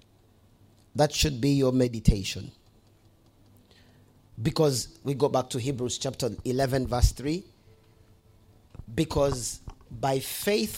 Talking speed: 100 wpm